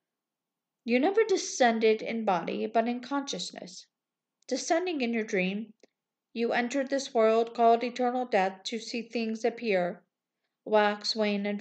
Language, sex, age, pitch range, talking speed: English, female, 50-69, 210-245 Hz, 135 wpm